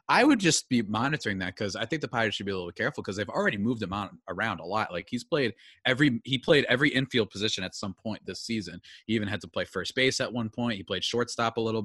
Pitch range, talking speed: 100-130 Hz, 270 wpm